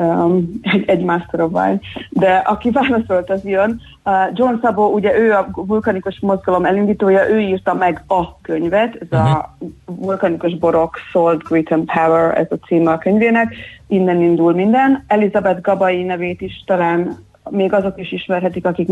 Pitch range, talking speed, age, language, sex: 180-210 Hz, 160 wpm, 30-49, Hungarian, female